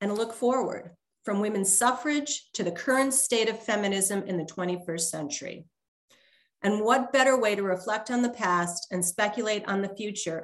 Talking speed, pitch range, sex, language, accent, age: 170 wpm, 185-240 Hz, female, English, American, 40-59